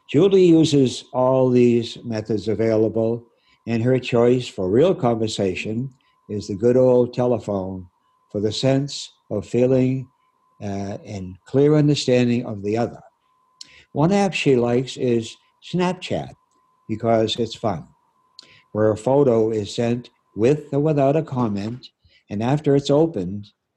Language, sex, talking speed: English, male, 130 wpm